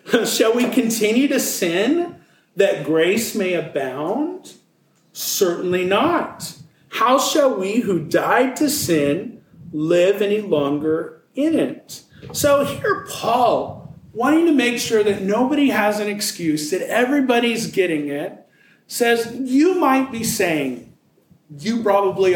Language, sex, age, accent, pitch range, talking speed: English, male, 40-59, American, 155-240 Hz, 125 wpm